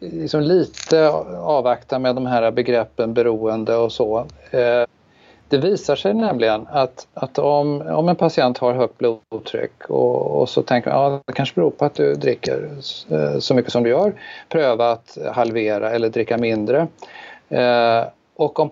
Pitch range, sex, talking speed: 115-150 Hz, male, 160 wpm